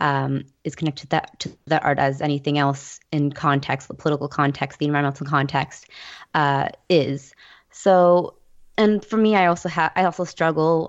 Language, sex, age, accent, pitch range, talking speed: English, female, 20-39, American, 145-165 Hz, 170 wpm